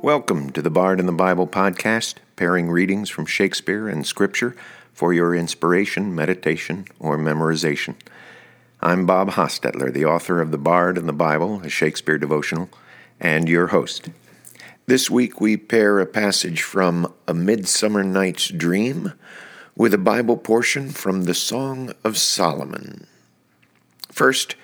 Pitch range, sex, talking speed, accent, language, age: 90-120 Hz, male, 140 wpm, American, English, 50-69